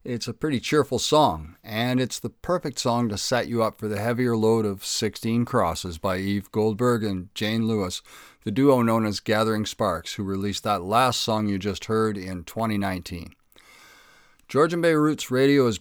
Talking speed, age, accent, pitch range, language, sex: 180 wpm, 50-69, American, 105-130 Hz, English, male